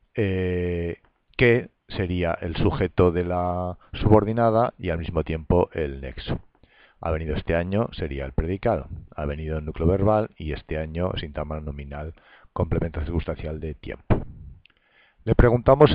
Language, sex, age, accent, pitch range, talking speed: Spanish, male, 50-69, Spanish, 85-105 Hz, 140 wpm